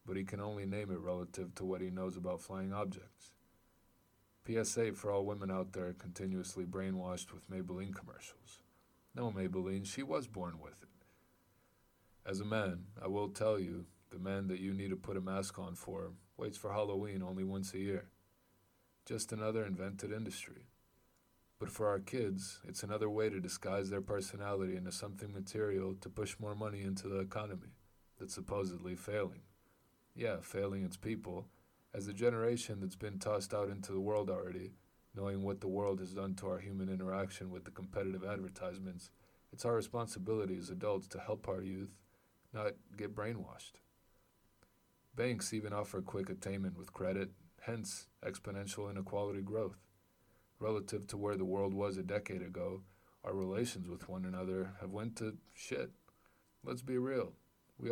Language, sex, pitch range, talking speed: English, male, 95-105 Hz, 165 wpm